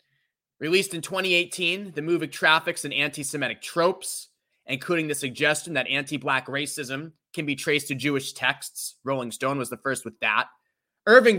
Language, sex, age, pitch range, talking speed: English, male, 20-39, 135-170 Hz, 155 wpm